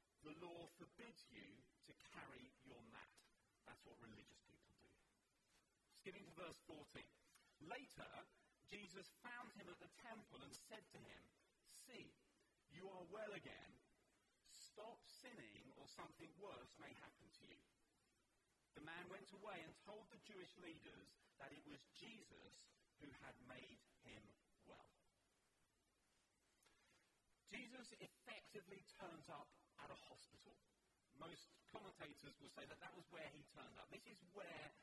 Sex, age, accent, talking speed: male, 40-59, British, 140 wpm